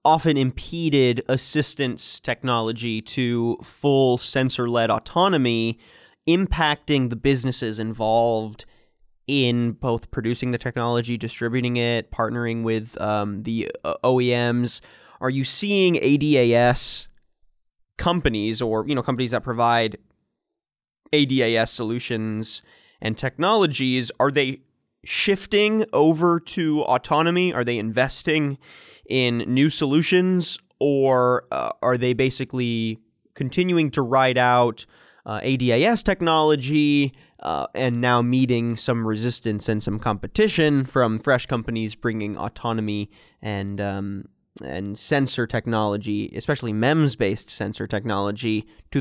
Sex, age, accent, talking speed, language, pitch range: male, 20-39, American, 105 wpm, English, 110-140 Hz